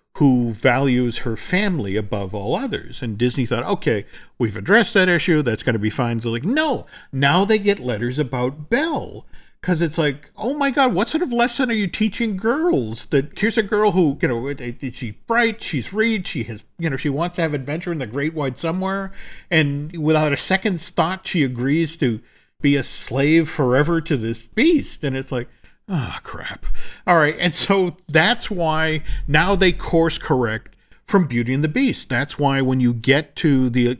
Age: 50-69